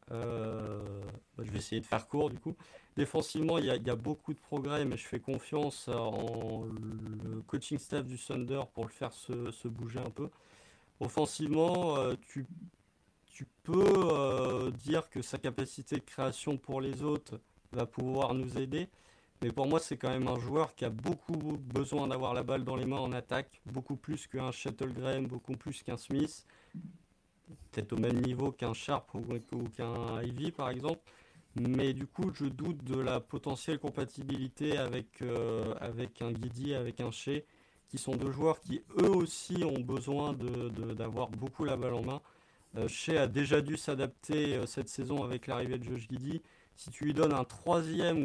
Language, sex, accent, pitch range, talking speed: French, male, French, 120-150 Hz, 185 wpm